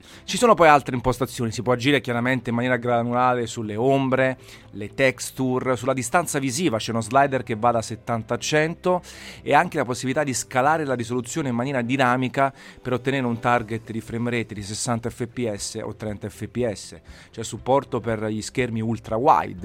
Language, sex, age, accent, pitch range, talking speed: Italian, male, 30-49, native, 105-130 Hz, 180 wpm